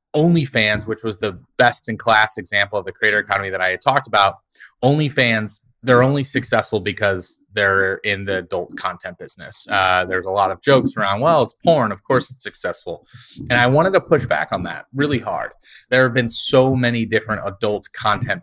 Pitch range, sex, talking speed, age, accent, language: 110-135 Hz, male, 190 wpm, 30-49, American, English